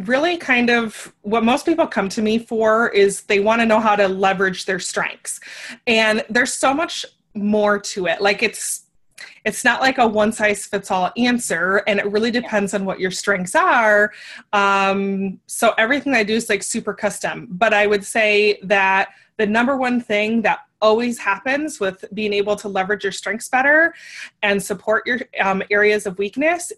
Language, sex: English, female